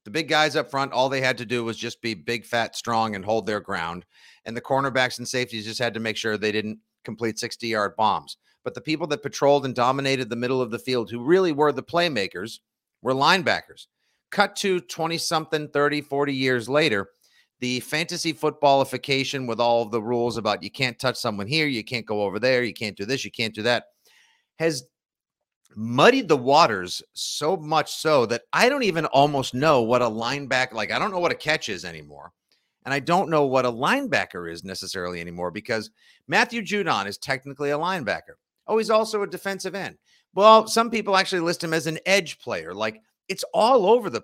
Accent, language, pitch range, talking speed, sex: American, English, 115-175 Hz, 205 wpm, male